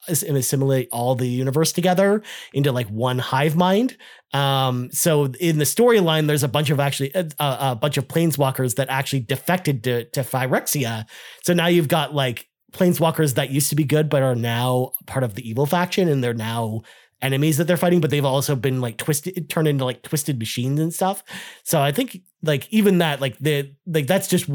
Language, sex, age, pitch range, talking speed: English, male, 30-49, 130-165 Hz, 200 wpm